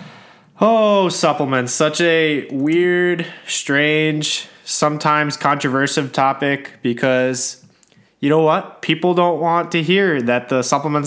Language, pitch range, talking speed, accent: English, 130-170 Hz, 115 wpm, American